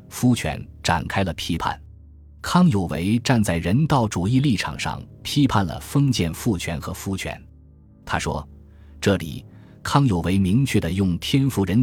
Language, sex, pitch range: Chinese, male, 85-115 Hz